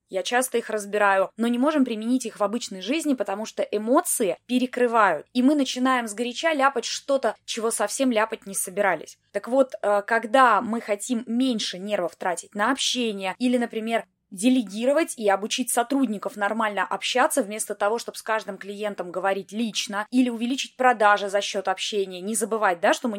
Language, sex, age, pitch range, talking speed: Russian, female, 20-39, 200-255 Hz, 165 wpm